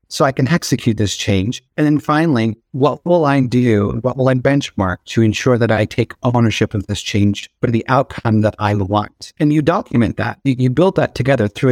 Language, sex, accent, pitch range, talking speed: English, male, American, 110-140 Hz, 210 wpm